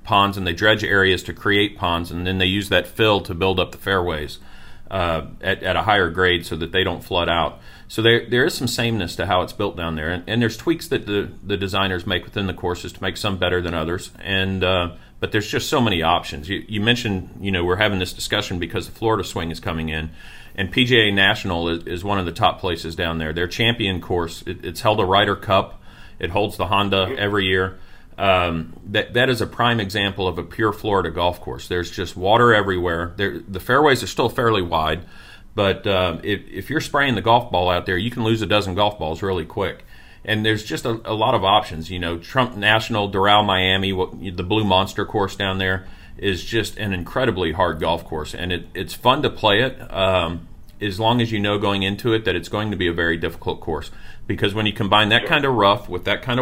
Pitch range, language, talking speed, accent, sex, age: 90-105 Hz, English, 235 wpm, American, male, 40-59